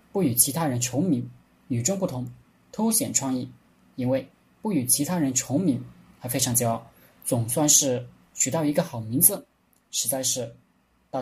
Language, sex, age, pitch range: Chinese, male, 20-39, 120-170 Hz